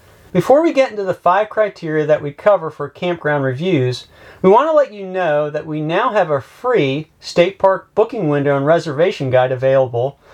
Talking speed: 190 wpm